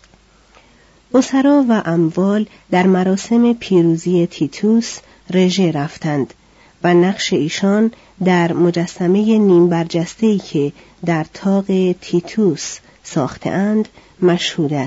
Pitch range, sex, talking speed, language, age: 170-220 Hz, female, 95 wpm, Persian, 40-59